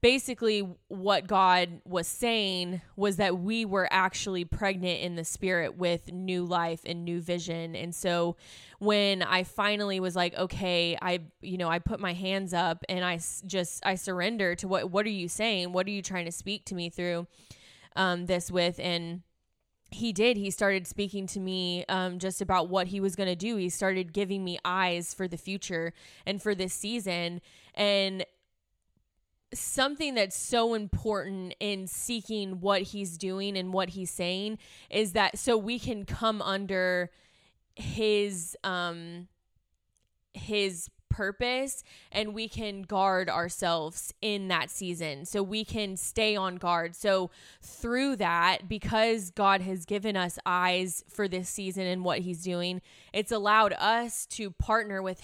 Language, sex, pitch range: English, female, 180-205 Hz